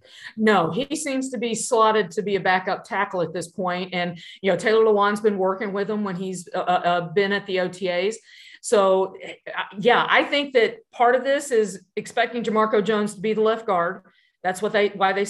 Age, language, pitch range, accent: 50-69, English, 190-225 Hz, American